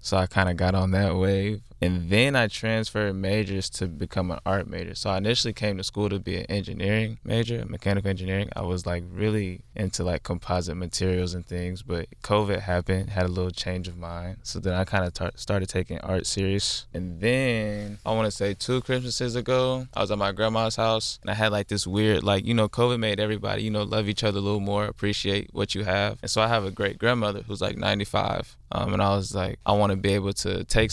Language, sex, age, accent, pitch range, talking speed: English, male, 20-39, American, 90-105 Hz, 235 wpm